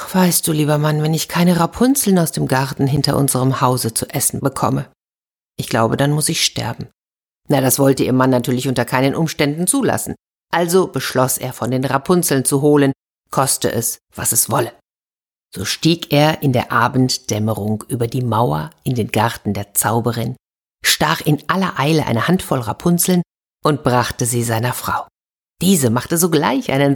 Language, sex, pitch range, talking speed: German, female, 120-160 Hz, 170 wpm